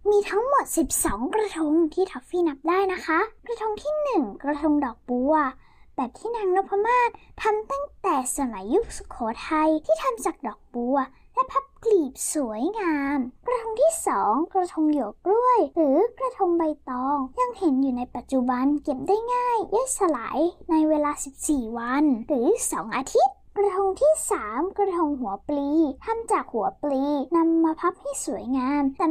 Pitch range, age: 275-395 Hz, 10-29